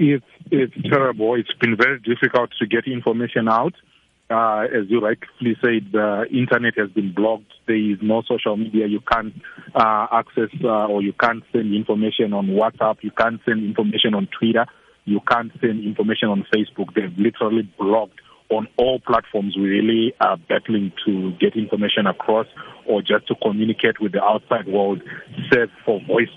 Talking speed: 175 wpm